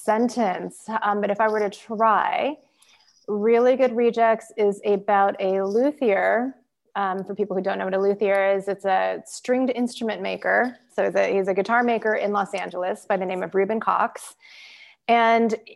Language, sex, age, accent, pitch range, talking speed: English, female, 20-39, American, 195-245 Hz, 170 wpm